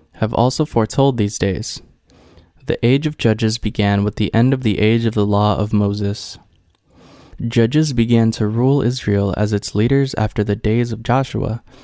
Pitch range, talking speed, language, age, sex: 105-125 Hz, 170 wpm, English, 20-39, male